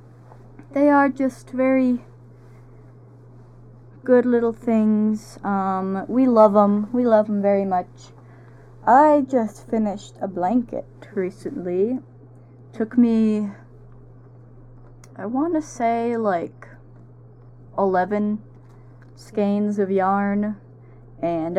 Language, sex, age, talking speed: English, female, 20-39, 95 wpm